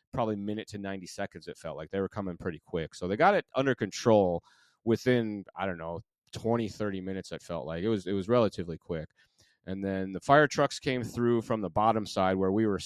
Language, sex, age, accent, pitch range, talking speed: English, male, 30-49, American, 95-120 Hz, 230 wpm